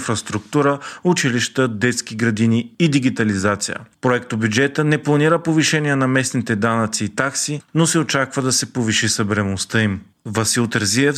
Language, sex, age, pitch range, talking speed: Bulgarian, male, 40-59, 115-145 Hz, 140 wpm